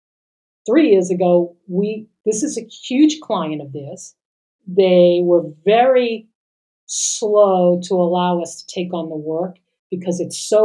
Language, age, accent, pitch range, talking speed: English, 50-69, American, 170-205 Hz, 145 wpm